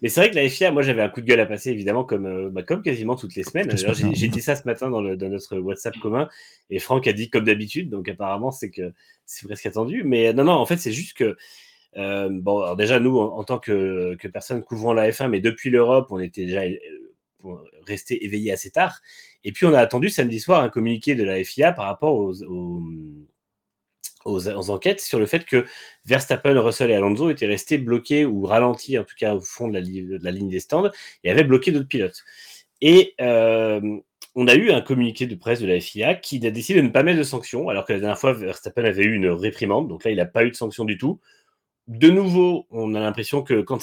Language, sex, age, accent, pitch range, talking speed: French, male, 30-49, French, 105-135 Hz, 240 wpm